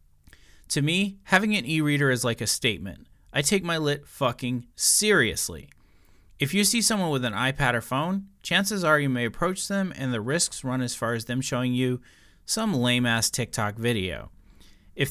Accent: American